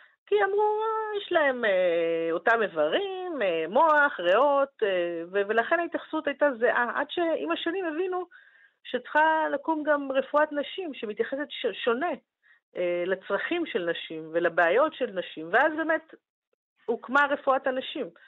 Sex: female